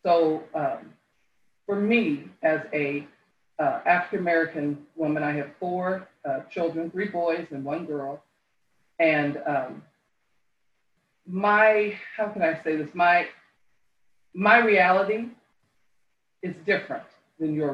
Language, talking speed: English, 115 wpm